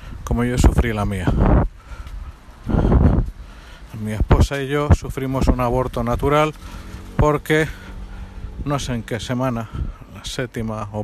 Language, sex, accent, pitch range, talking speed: Spanish, male, Spanish, 95-120 Hz, 120 wpm